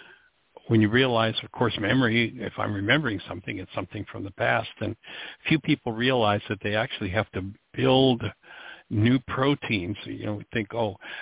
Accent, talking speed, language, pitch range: American, 170 wpm, English, 105-125 Hz